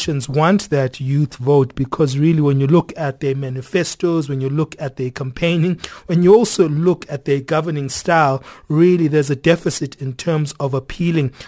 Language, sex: English, male